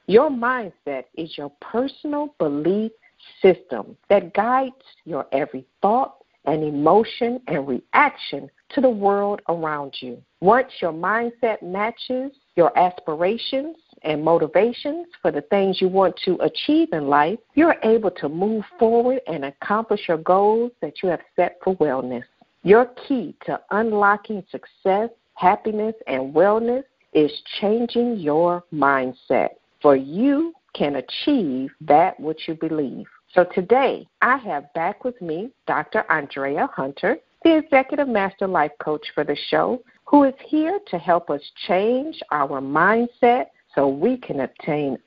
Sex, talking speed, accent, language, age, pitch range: female, 140 wpm, American, English, 50-69, 155-230 Hz